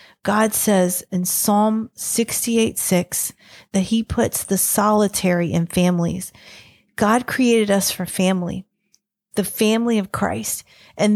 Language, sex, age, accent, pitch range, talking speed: English, female, 40-59, American, 185-225 Hz, 125 wpm